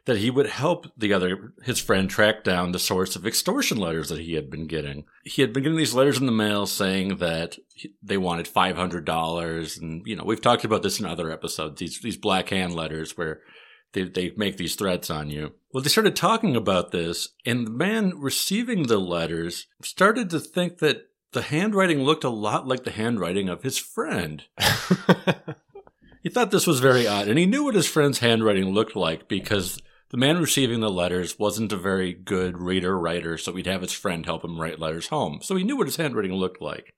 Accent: American